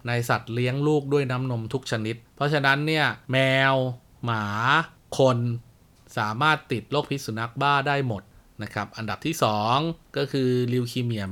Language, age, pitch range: Thai, 20-39, 105-130 Hz